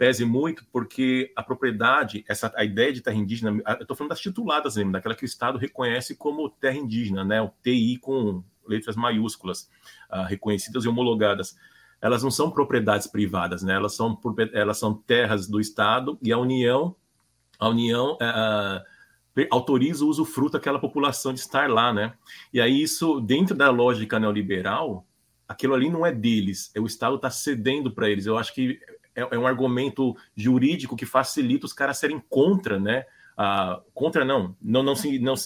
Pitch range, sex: 105-135 Hz, male